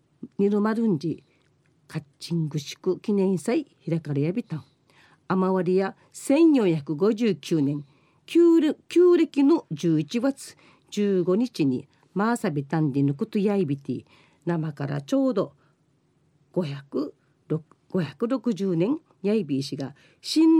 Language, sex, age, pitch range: Japanese, female, 50-69, 150-230 Hz